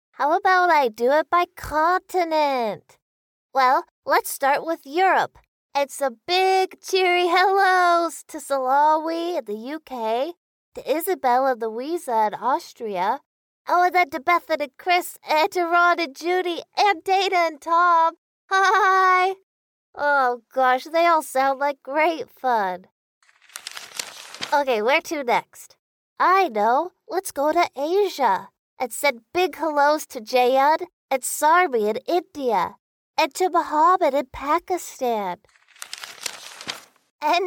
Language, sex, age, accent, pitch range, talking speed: English, female, 20-39, American, 275-360 Hz, 125 wpm